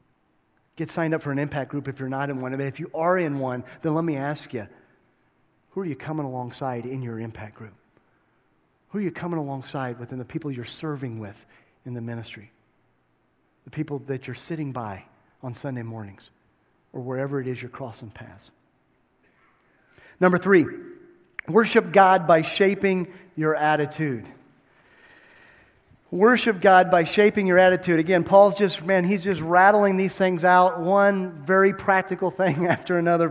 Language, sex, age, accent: English, male, 40-59, American